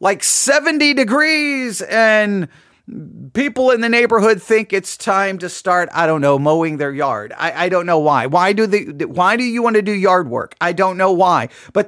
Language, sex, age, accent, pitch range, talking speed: English, male, 40-59, American, 170-255 Hz, 190 wpm